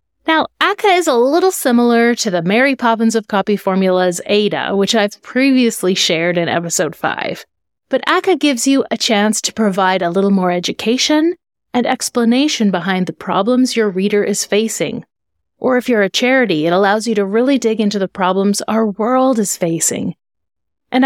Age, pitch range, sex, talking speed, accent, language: 30-49, 195-255 Hz, female, 175 wpm, American, English